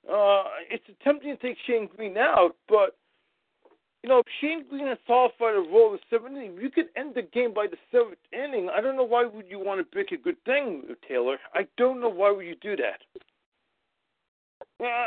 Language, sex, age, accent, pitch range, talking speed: English, male, 40-59, American, 250-335 Hz, 210 wpm